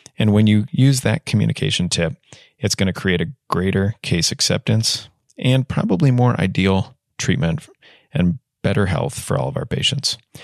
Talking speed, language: 160 wpm, English